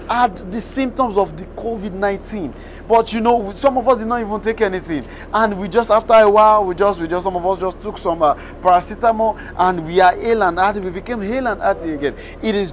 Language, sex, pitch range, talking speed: English, male, 185-220 Hz, 230 wpm